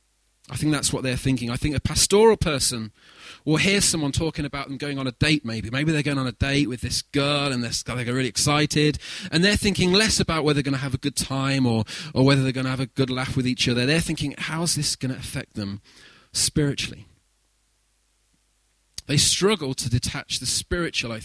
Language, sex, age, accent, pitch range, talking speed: English, male, 30-49, British, 115-145 Hz, 220 wpm